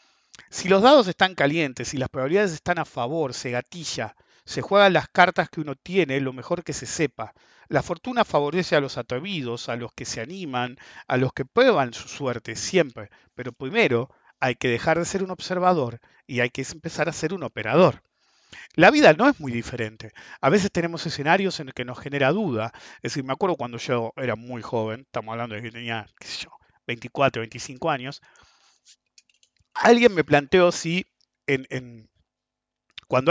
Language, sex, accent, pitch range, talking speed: English, male, Argentinian, 120-170 Hz, 180 wpm